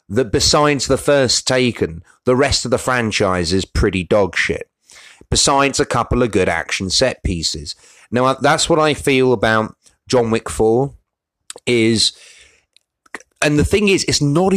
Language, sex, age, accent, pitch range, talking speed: English, male, 30-49, British, 110-140 Hz, 155 wpm